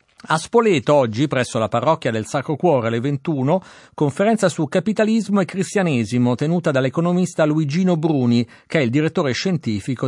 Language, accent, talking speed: Italian, native, 150 wpm